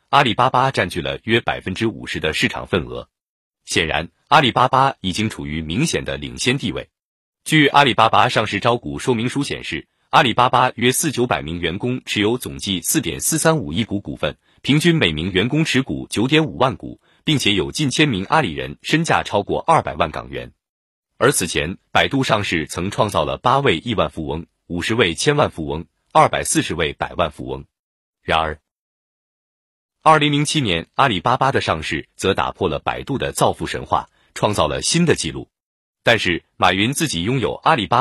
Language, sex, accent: Chinese, male, native